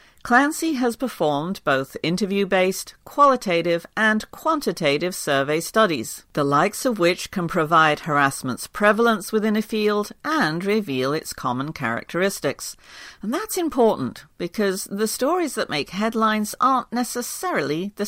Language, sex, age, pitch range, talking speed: English, female, 50-69, 155-220 Hz, 125 wpm